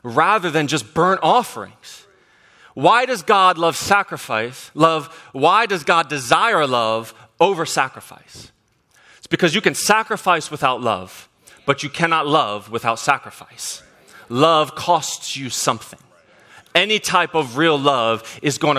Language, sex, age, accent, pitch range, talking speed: English, male, 30-49, American, 120-165 Hz, 135 wpm